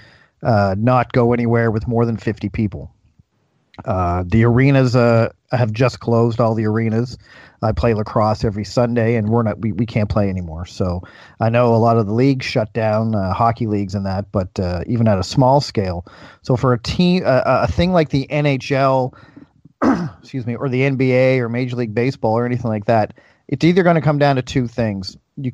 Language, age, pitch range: English, 40-59, 110-130 Hz